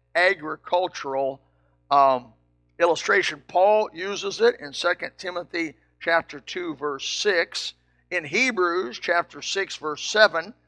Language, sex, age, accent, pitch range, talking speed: English, male, 60-79, American, 140-190 Hz, 105 wpm